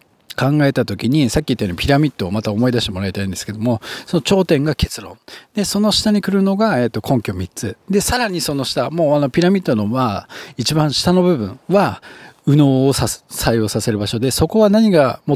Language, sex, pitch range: Japanese, male, 110-175 Hz